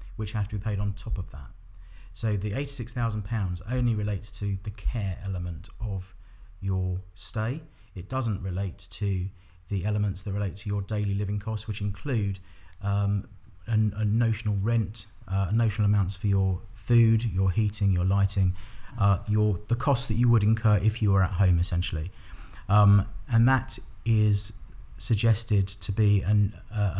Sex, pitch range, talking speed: male, 100-115 Hz, 165 wpm